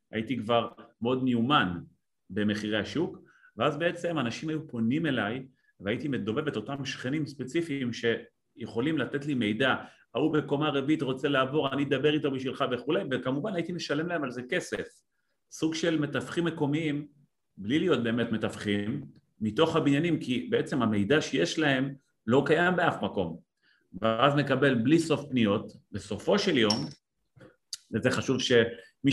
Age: 40-59